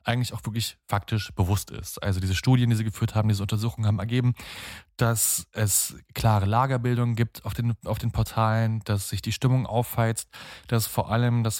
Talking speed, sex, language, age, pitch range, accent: 180 wpm, male, German, 20-39, 100-115 Hz, German